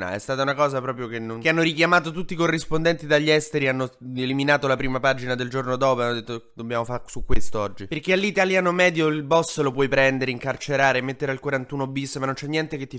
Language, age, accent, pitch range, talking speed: Italian, 20-39, native, 120-150 Hz, 230 wpm